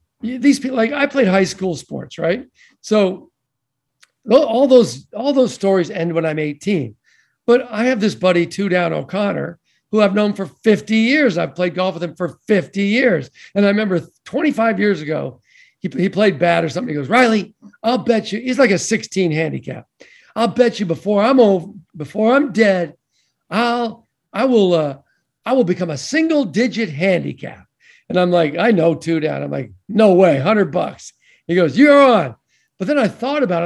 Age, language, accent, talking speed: 50-69, English, American, 190 wpm